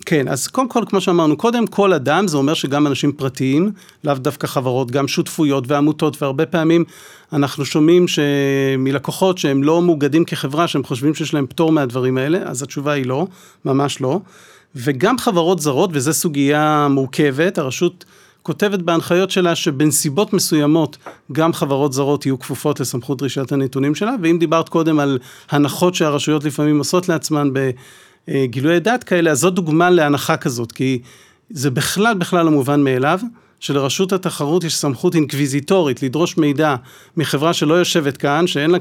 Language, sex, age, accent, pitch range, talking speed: Hebrew, male, 40-59, native, 140-175 Hz, 155 wpm